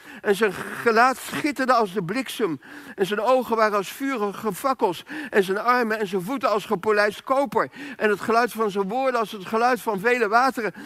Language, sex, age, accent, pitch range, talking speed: Dutch, male, 60-79, Dutch, 175-240 Hz, 195 wpm